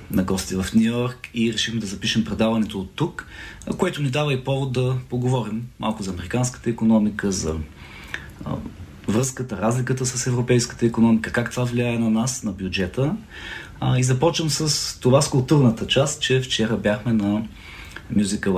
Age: 30-49